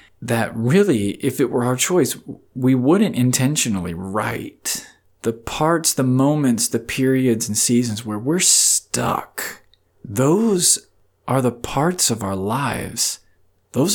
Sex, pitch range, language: male, 110-150 Hz, English